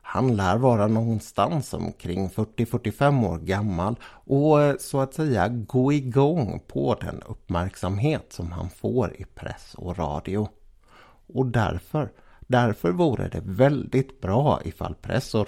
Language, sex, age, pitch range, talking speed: Swedish, male, 60-79, 95-135 Hz, 130 wpm